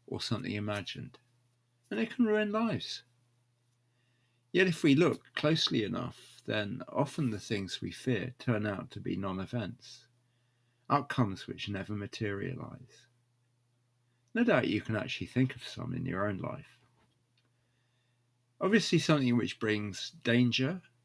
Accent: British